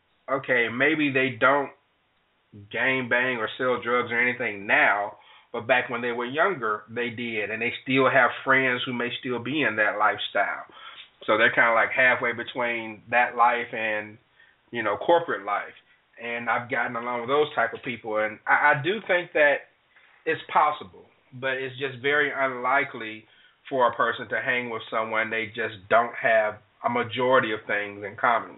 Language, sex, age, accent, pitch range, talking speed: English, male, 30-49, American, 115-140 Hz, 180 wpm